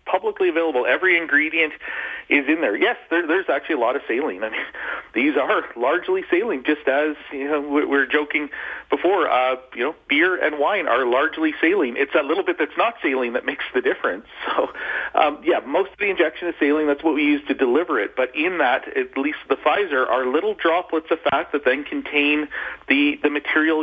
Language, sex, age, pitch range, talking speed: English, male, 40-59, 130-175 Hz, 205 wpm